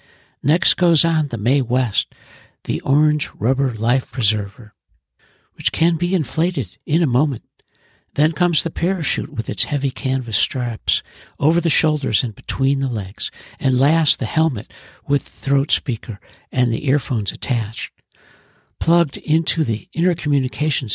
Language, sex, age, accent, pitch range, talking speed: English, male, 60-79, American, 115-150 Hz, 145 wpm